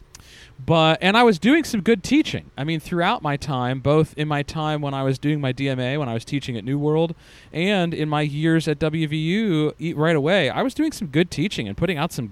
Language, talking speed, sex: English, 240 wpm, male